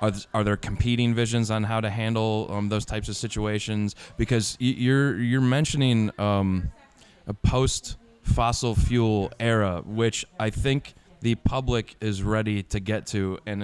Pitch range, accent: 100-120 Hz, American